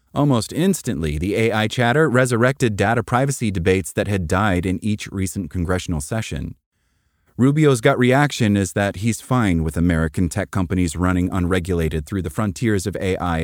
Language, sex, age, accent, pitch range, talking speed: English, male, 30-49, American, 90-120 Hz, 155 wpm